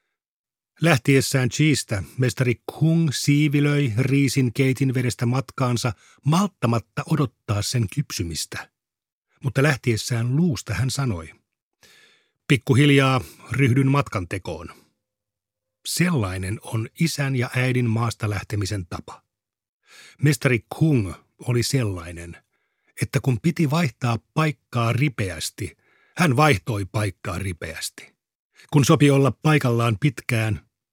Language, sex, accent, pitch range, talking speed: Finnish, male, native, 105-140 Hz, 95 wpm